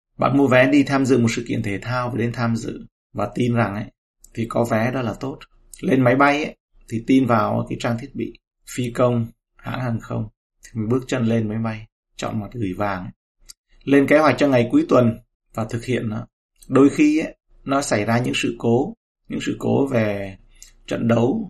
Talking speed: 220 wpm